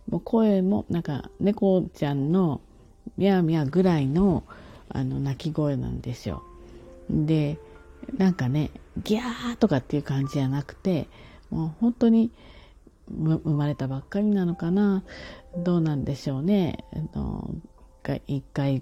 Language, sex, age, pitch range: Japanese, female, 40-59, 130-180 Hz